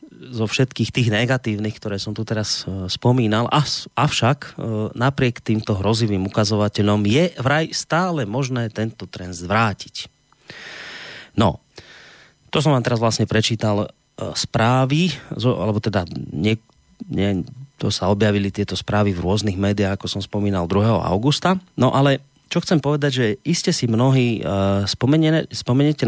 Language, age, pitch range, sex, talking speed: Slovak, 30-49, 100-130 Hz, male, 125 wpm